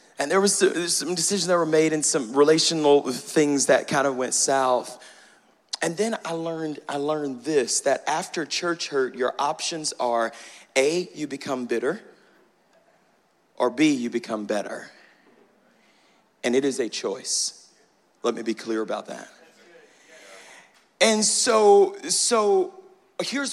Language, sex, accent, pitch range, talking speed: English, male, American, 115-170 Hz, 140 wpm